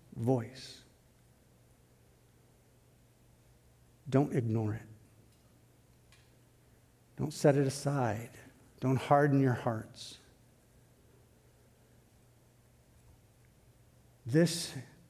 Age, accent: 60-79, American